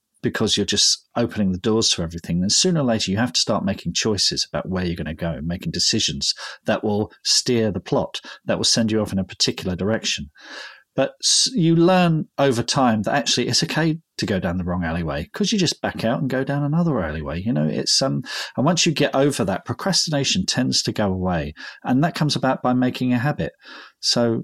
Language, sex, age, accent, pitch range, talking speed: English, male, 40-59, British, 100-140 Hz, 220 wpm